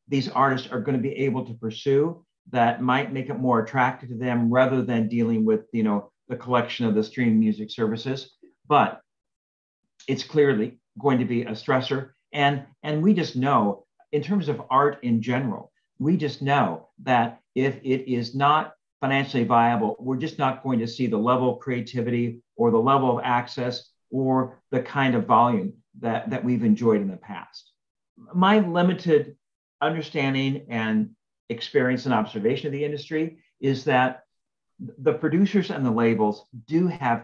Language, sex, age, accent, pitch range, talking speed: English, male, 50-69, American, 120-155 Hz, 170 wpm